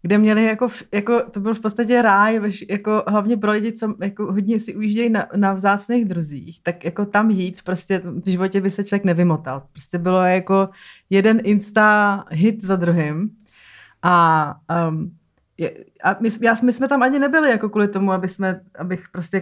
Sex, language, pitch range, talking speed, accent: female, Czech, 170-205 Hz, 180 wpm, native